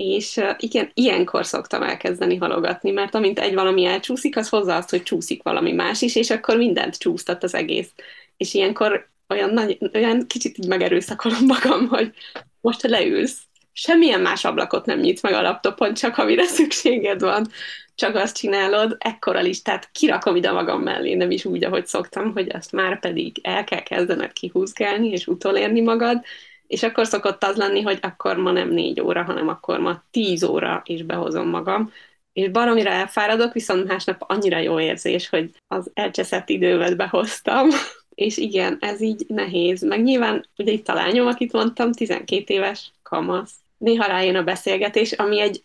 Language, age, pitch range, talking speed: Hungarian, 20-39, 195-245 Hz, 165 wpm